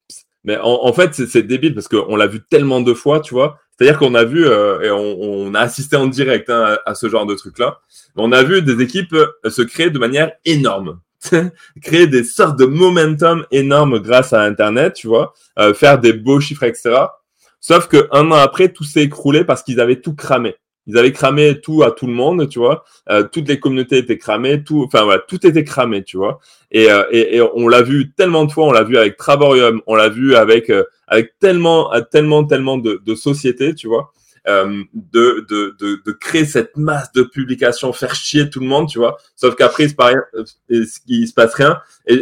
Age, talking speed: 20-39, 220 wpm